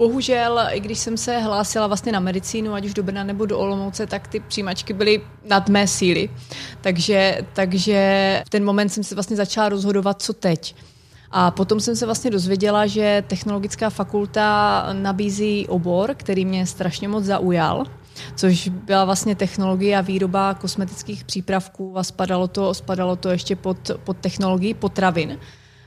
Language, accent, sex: Czech, native, female